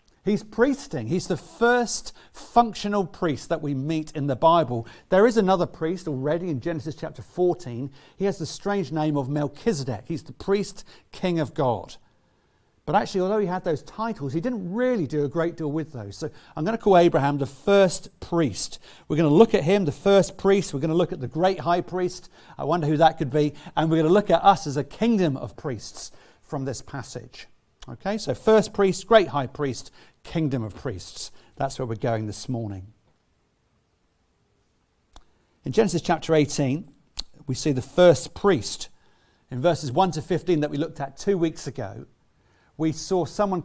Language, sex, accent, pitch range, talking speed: English, male, British, 140-190 Hz, 185 wpm